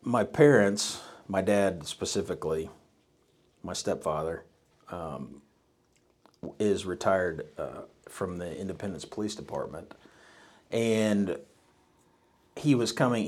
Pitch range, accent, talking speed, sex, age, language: 85-105 Hz, American, 90 wpm, male, 50-69, English